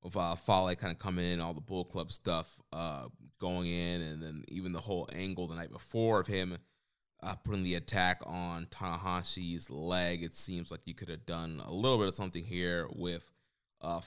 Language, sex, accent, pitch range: English, male, American, 85-95 Hz